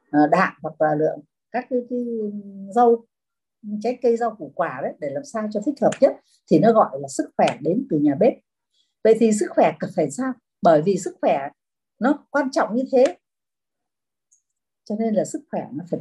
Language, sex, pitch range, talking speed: Vietnamese, female, 165-270 Hz, 200 wpm